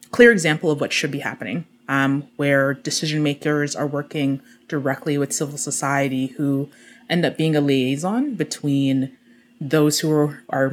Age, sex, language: 20-39, female, French